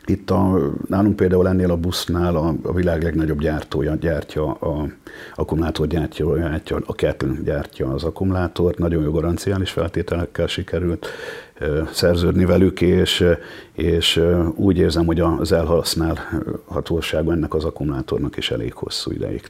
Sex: male